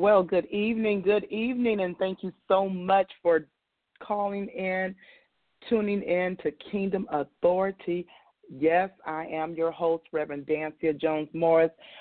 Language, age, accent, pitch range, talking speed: English, 40-59, American, 160-200 Hz, 130 wpm